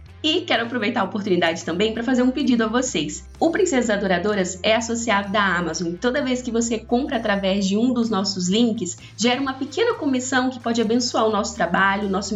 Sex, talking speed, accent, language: female, 205 wpm, Brazilian, Portuguese